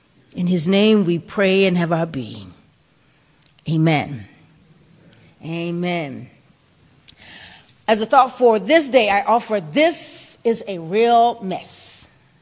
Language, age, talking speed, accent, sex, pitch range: English, 40-59, 115 wpm, American, female, 210-285 Hz